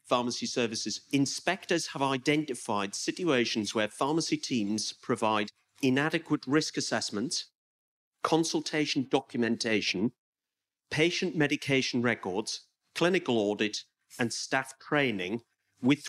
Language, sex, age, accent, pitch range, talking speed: English, male, 40-59, British, 110-145 Hz, 90 wpm